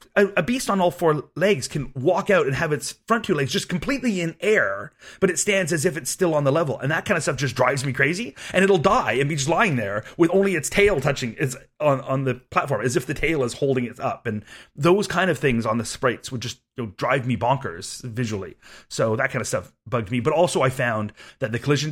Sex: male